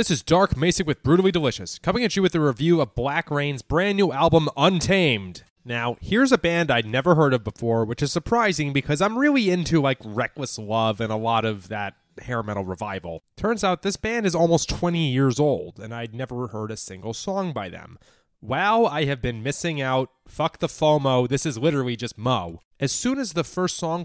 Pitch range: 115-160 Hz